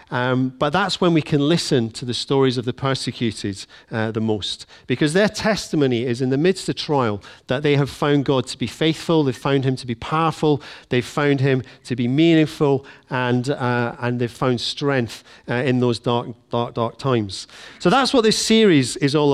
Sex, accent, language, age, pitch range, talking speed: male, British, English, 40-59, 120-150 Hz, 200 wpm